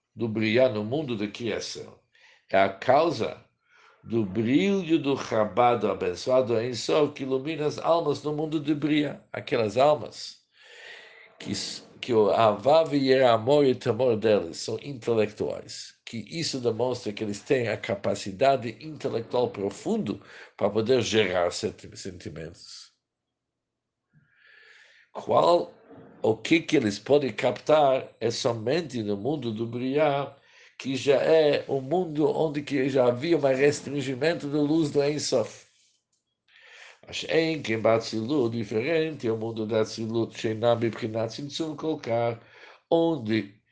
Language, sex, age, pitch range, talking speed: English, male, 60-79, 115-155 Hz, 125 wpm